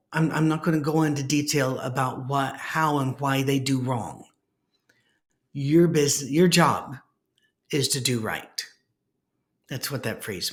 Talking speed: 160 wpm